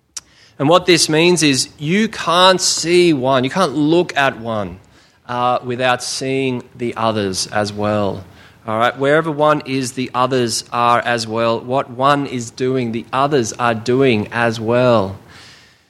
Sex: male